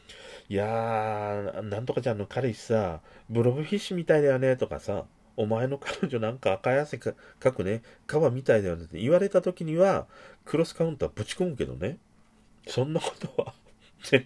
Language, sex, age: Japanese, male, 40-59